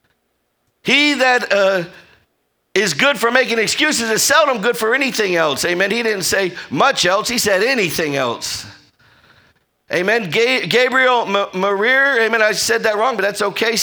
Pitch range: 200-250 Hz